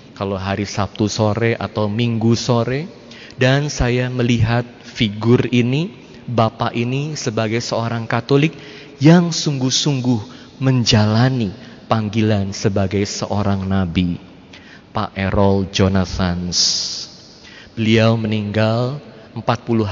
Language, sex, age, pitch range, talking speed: Indonesian, male, 30-49, 105-120 Hz, 90 wpm